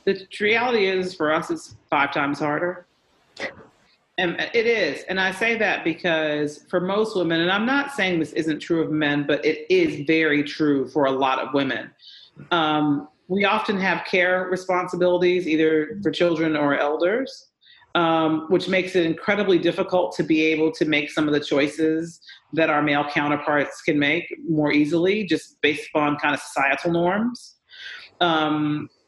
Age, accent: 40-59, American